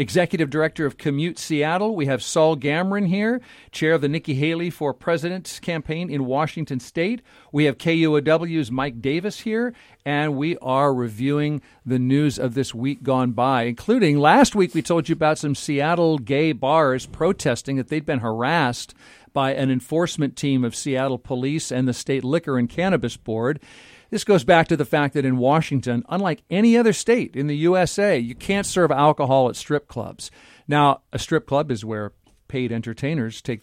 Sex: male